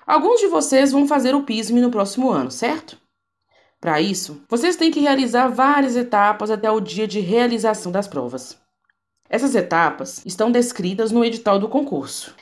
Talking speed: 165 wpm